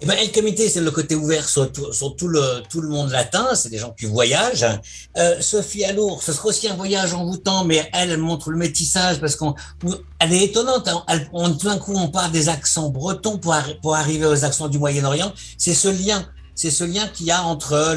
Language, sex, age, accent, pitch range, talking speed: French, male, 60-79, French, 130-170 Hz, 235 wpm